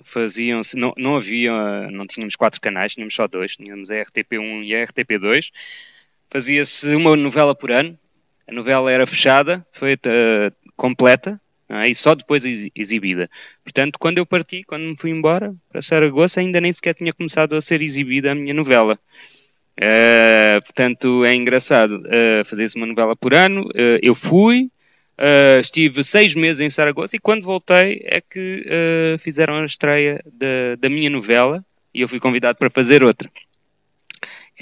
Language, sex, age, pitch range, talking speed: Portuguese, male, 20-39, 110-150 Hz, 160 wpm